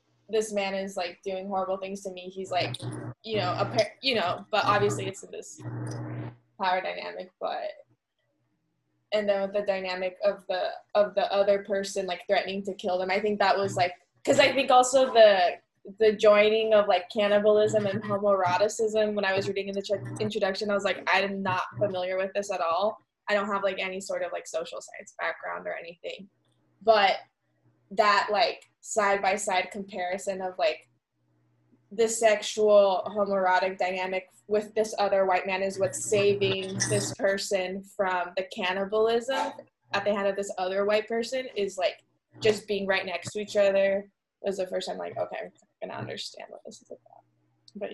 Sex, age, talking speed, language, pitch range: female, 10-29, 185 wpm, English, 185-210 Hz